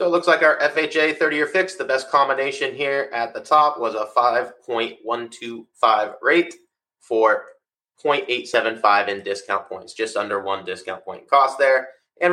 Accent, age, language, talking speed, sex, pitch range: American, 20-39, English, 155 wpm, male, 105-155 Hz